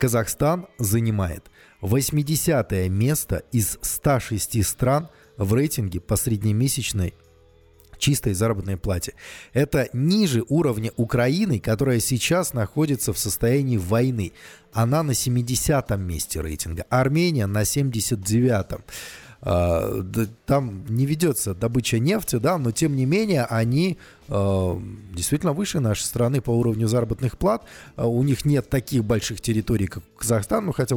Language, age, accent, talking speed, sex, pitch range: Russian, 20-39, native, 120 wpm, male, 105-140 Hz